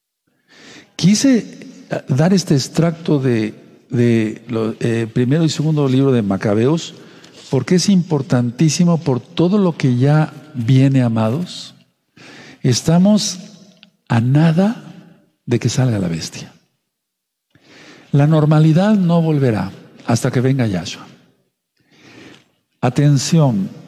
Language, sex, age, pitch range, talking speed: Spanish, male, 60-79, 125-165 Hz, 100 wpm